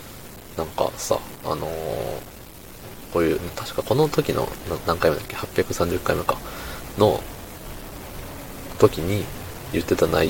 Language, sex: Japanese, male